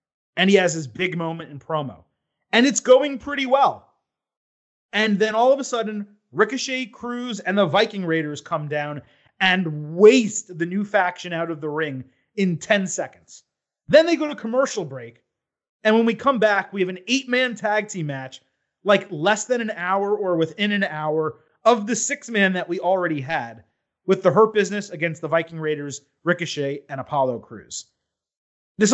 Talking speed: 185 wpm